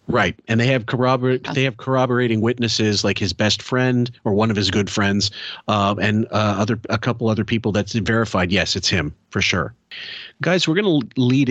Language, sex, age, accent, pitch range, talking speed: English, male, 40-59, American, 95-115 Hz, 200 wpm